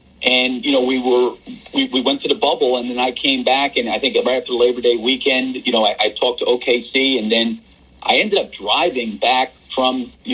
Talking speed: 240 wpm